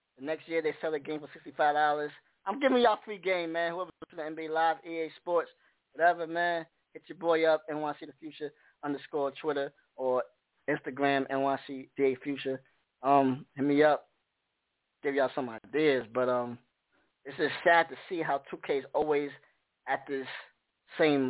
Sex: male